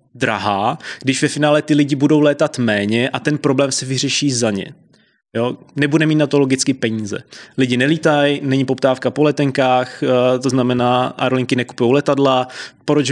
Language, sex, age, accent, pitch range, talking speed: Czech, male, 20-39, native, 115-135 Hz, 160 wpm